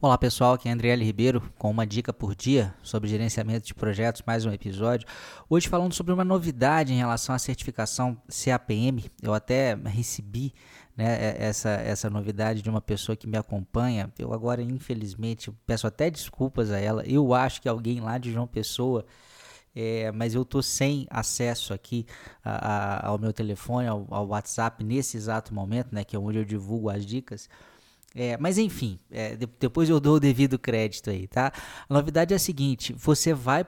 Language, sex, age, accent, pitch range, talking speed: Portuguese, male, 20-39, Brazilian, 110-145 Hz, 180 wpm